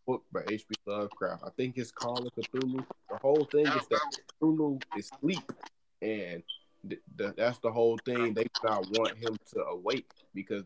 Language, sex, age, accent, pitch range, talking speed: English, male, 20-39, American, 110-135 Hz, 170 wpm